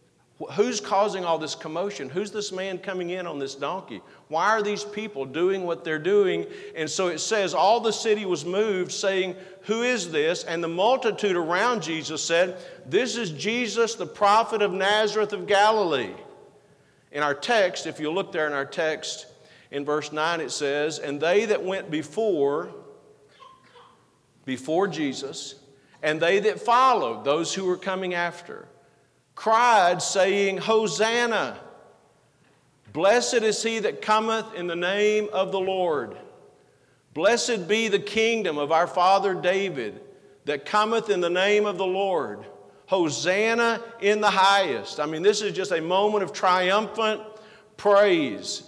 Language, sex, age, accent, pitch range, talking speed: English, male, 50-69, American, 160-215 Hz, 155 wpm